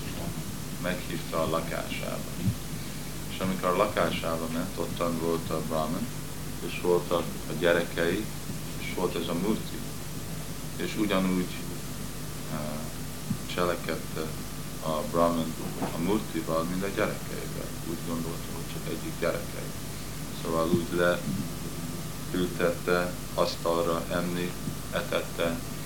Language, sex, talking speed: Hungarian, male, 100 wpm